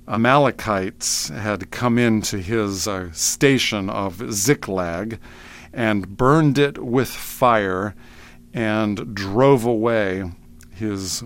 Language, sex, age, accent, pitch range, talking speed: English, male, 50-69, American, 95-120 Hz, 95 wpm